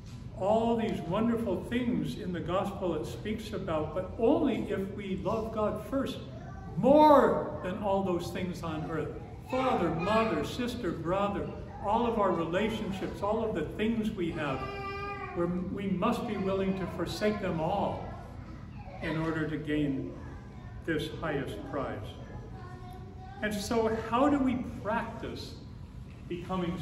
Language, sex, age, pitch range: English, male, 50-69, 155-205 Hz